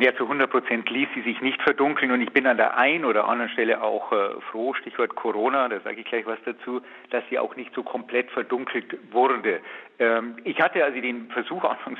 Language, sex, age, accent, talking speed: German, male, 50-69, German, 220 wpm